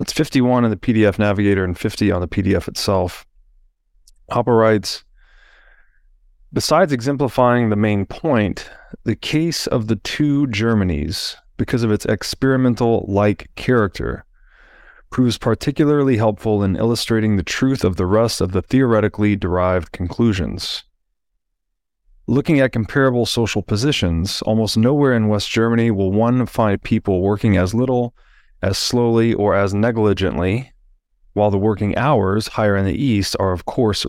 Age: 30-49